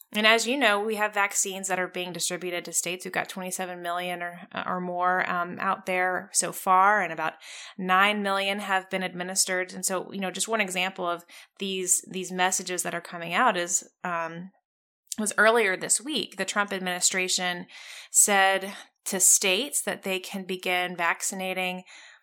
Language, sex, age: English, female, 20-39